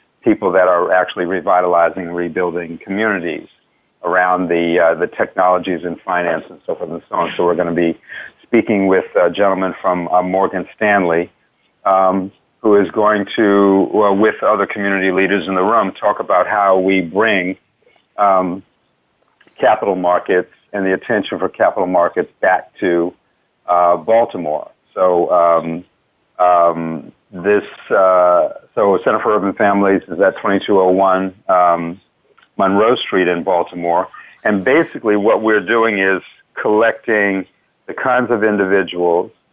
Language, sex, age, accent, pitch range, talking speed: English, male, 50-69, American, 90-100 Hz, 140 wpm